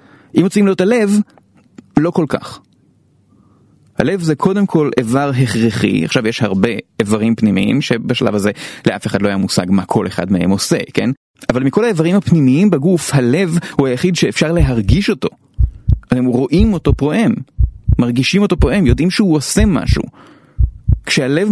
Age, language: 30-49, Hebrew